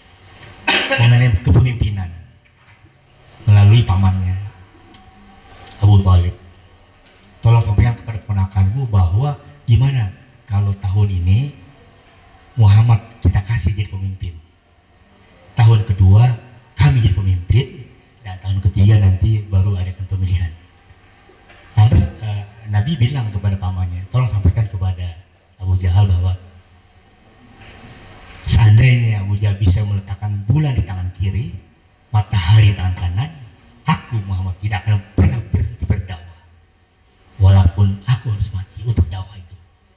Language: Indonesian